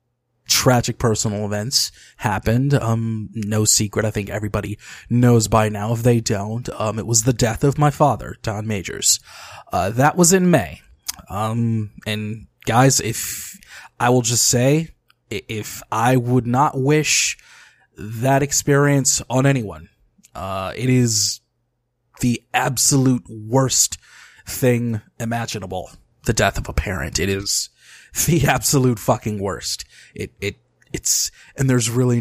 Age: 20-39